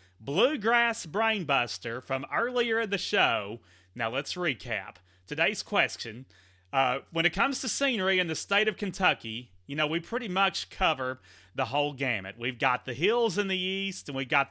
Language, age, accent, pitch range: English, 30-49, American, 115-190 Hz